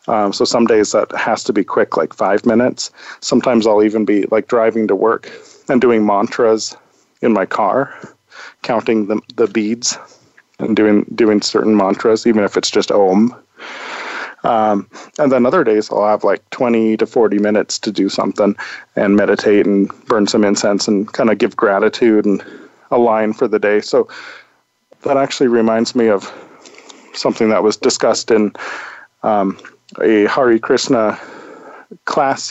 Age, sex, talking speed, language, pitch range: 40-59, male, 160 wpm, English, 105-120 Hz